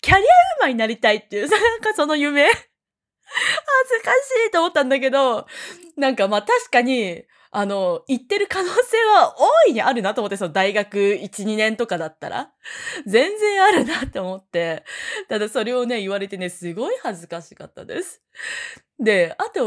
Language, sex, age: Japanese, female, 20-39